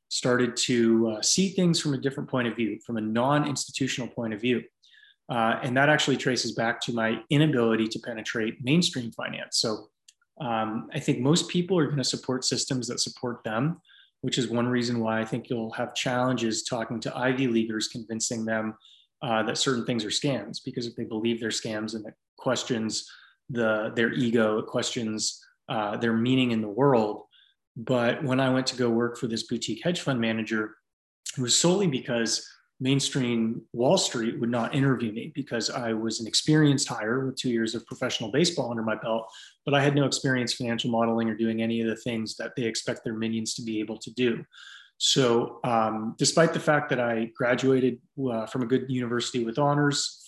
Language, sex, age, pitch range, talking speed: English, male, 20-39, 115-135 Hz, 195 wpm